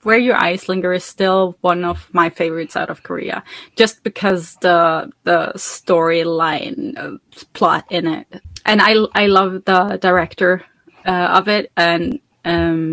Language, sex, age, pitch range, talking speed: English, female, 20-39, 180-240 Hz, 155 wpm